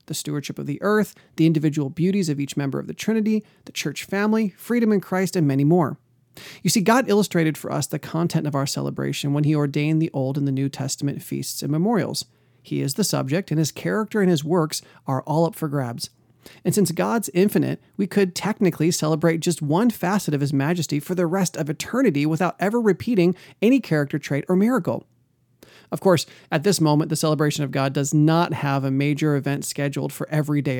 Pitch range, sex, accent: 140-175 Hz, male, American